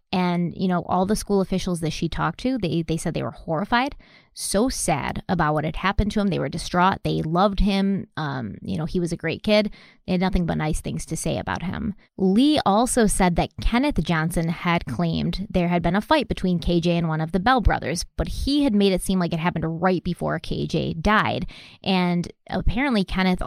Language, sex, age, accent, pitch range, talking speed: English, female, 20-39, American, 170-205 Hz, 220 wpm